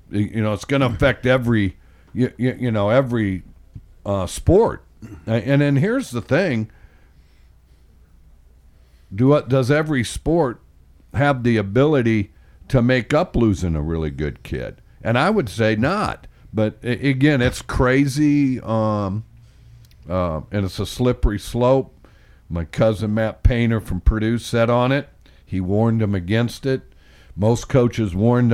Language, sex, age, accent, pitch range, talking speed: English, male, 60-79, American, 85-120 Hz, 140 wpm